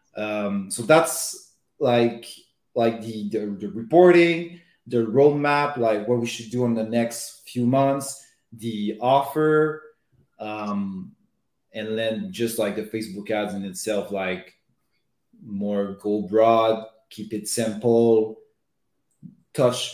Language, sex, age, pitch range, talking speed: English, male, 30-49, 110-135 Hz, 125 wpm